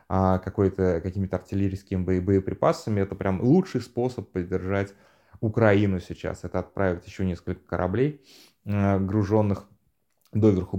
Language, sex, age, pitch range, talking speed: Russian, male, 20-39, 95-115 Hz, 95 wpm